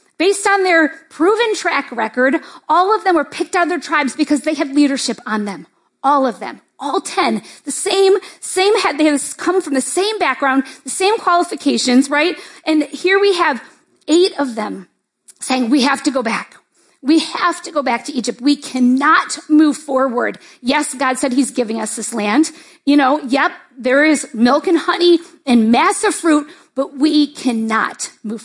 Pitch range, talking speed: 275-355 Hz, 185 wpm